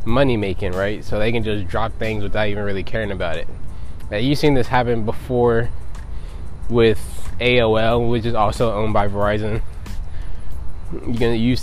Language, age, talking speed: English, 20-39, 155 wpm